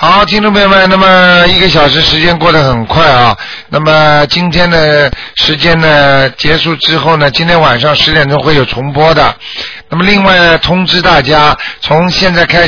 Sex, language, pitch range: male, Chinese, 150-180 Hz